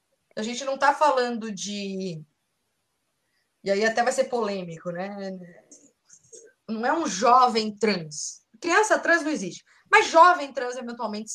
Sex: female